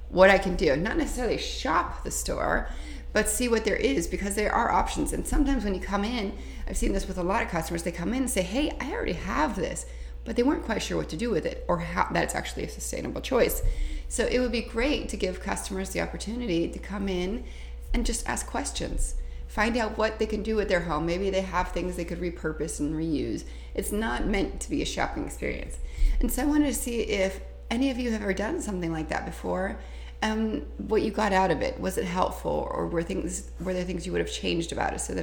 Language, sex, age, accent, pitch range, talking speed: English, female, 30-49, American, 145-225 Hz, 245 wpm